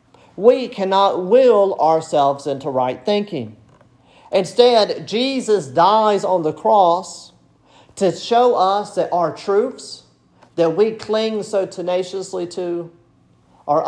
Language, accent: English, American